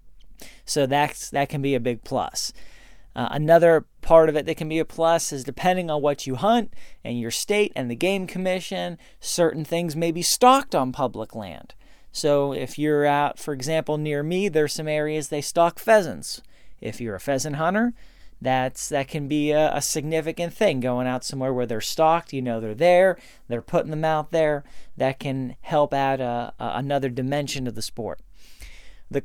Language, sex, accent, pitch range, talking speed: English, male, American, 130-170 Hz, 195 wpm